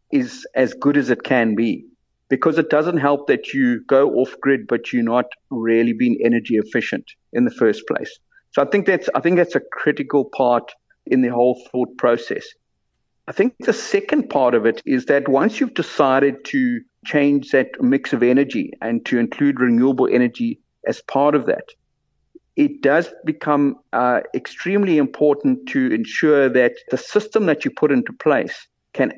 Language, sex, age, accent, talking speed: English, male, 50-69, South African, 175 wpm